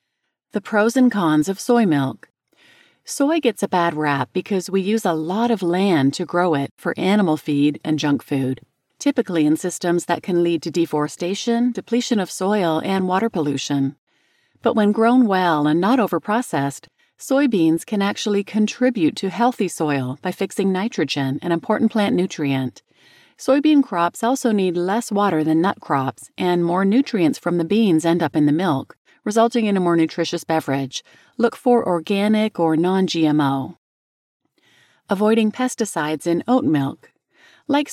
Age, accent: 40-59, American